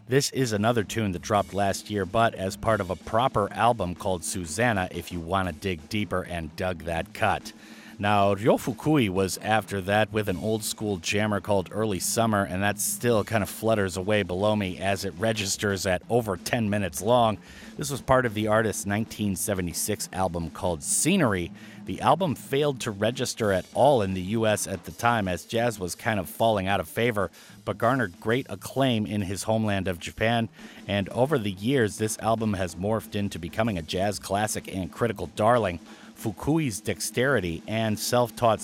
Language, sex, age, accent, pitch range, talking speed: English, male, 30-49, American, 95-115 Hz, 185 wpm